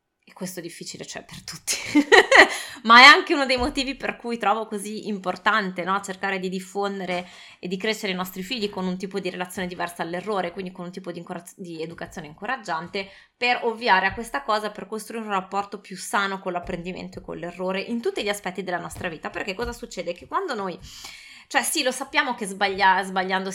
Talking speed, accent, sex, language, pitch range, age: 200 wpm, native, female, Italian, 185-225 Hz, 20-39